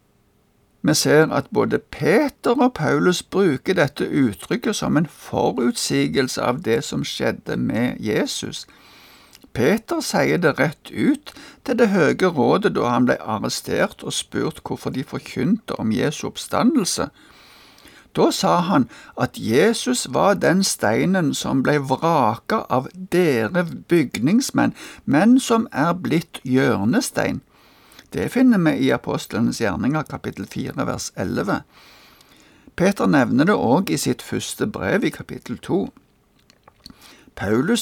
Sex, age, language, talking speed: male, 60-79, Danish, 125 wpm